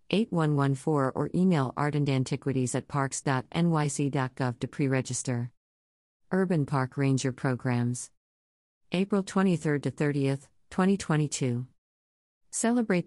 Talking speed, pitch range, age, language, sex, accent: 75 wpm, 125-150 Hz, 50-69, English, female, American